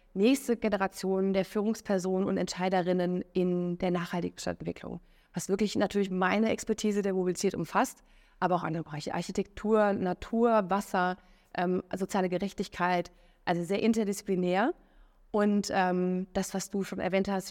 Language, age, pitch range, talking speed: German, 20-39, 175-195 Hz, 135 wpm